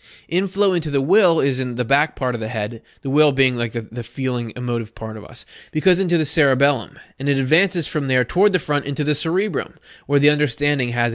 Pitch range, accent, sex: 125-155 Hz, American, male